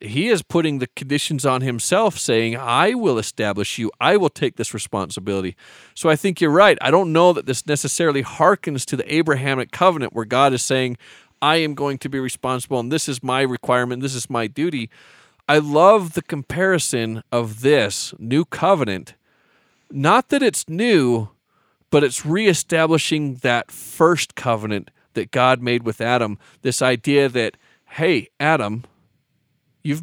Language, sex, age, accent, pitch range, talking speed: English, male, 40-59, American, 125-160 Hz, 160 wpm